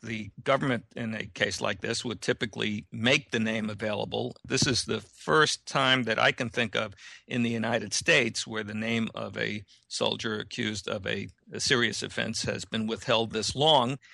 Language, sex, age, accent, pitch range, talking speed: English, male, 50-69, American, 115-145 Hz, 185 wpm